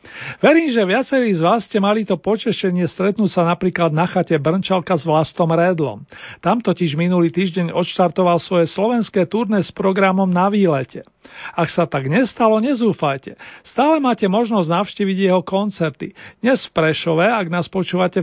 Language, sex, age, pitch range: Slovak, male, 40-59, 170-200 Hz